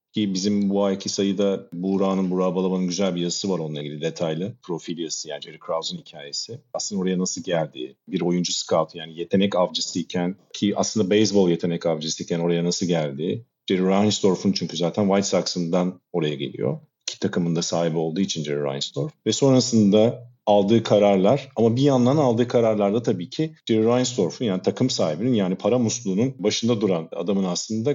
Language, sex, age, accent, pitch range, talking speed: Turkish, male, 50-69, native, 95-125 Hz, 170 wpm